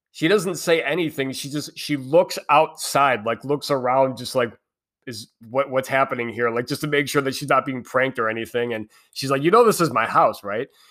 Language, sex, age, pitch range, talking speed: English, male, 30-49, 110-145 Hz, 225 wpm